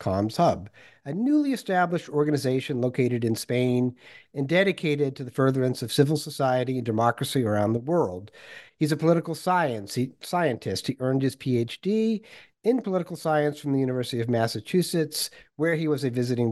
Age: 50-69